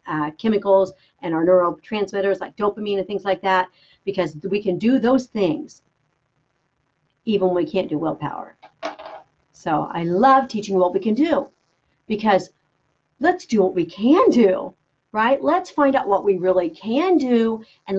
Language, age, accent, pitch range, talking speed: English, 50-69, American, 180-225 Hz, 160 wpm